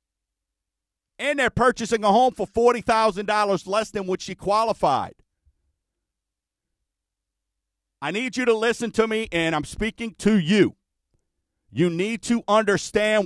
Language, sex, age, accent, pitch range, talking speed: English, male, 50-69, American, 140-205 Hz, 125 wpm